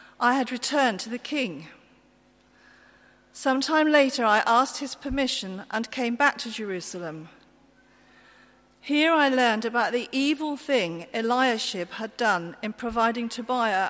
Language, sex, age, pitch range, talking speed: English, female, 40-59, 215-260 Hz, 130 wpm